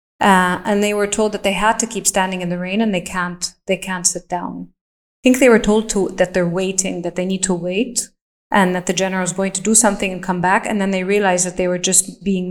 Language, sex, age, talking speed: English, female, 20-39, 270 wpm